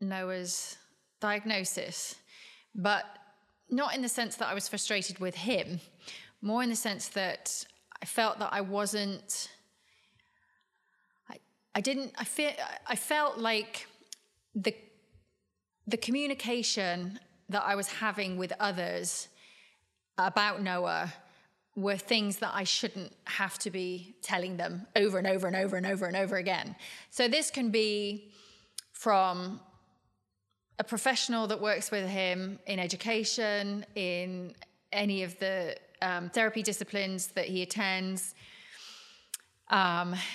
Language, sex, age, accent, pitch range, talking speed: English, female, 30-49, British, 185-235 Hz, 130 wpm